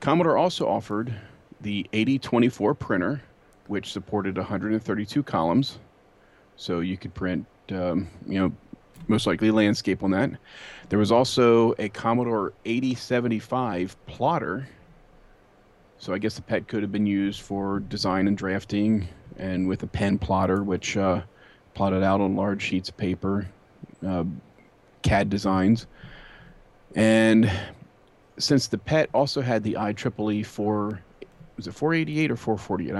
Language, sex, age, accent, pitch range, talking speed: English, male, 40-59, American, 100-115 Hz, 135 wpm